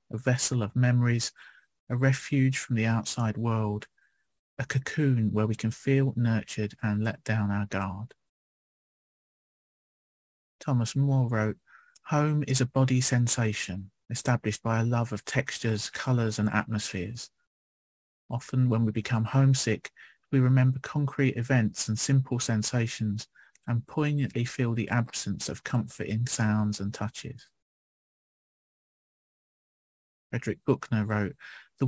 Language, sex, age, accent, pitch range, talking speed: English, male, 40-59, British, 105-130 Hz, 120 wpm